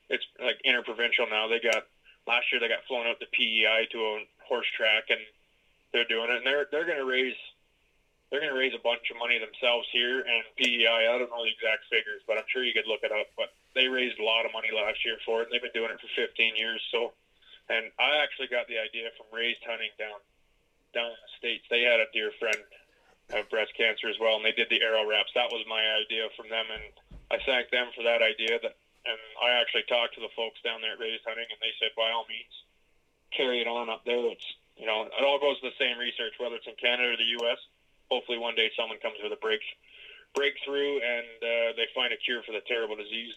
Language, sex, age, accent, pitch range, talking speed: English, male, 20-39, American, 115-140 Hz, 240 wpm